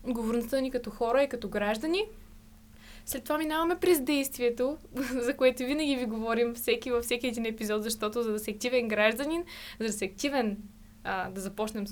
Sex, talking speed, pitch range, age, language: female, 175 wpm, 225-265 Hz, 20-39, Bulgarian